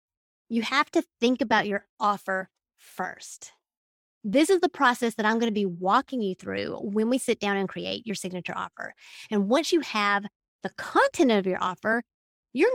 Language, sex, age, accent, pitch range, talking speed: English, female, 30-49, American, 205-275 Hz, 185 wpm